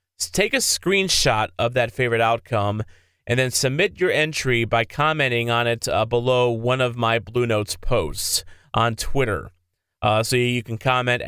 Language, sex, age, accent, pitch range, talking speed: English, male, 30-49, American, 110-145 Hz, 165 wpm